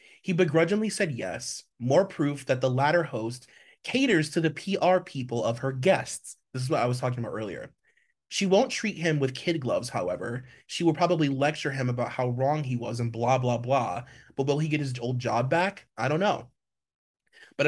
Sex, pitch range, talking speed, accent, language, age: male, 120-155 Hz, 205 wpm, American, English, 30-49